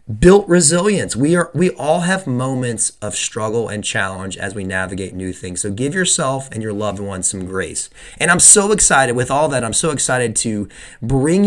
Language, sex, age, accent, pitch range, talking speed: English, male, 30-49, American, 110-140 Hz, 200 wpm